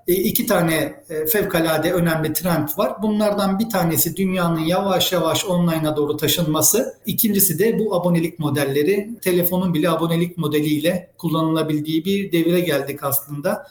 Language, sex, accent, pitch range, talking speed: Turkish, male, native, 180-240 Hz, 125 wpm